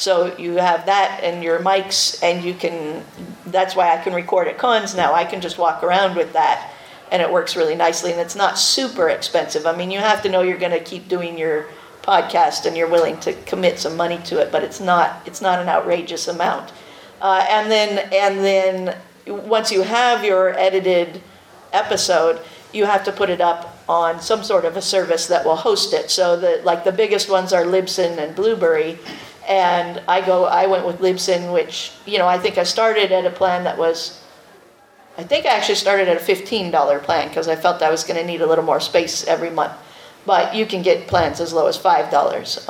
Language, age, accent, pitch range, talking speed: English, 50-69, American, 175-200 Hz, 215 wpm